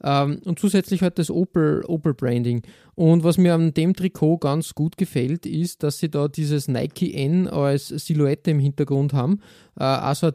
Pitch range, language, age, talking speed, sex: 135-165 Hz, German, 20-39, 170 wpm, male